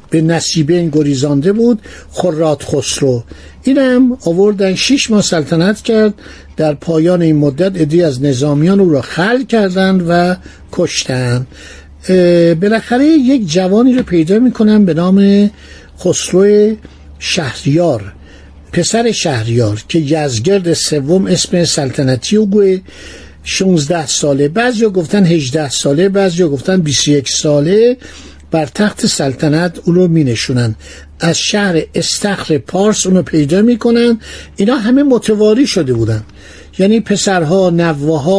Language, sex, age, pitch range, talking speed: Persian, male, 60-79, 150-210 Hz, 125 wpm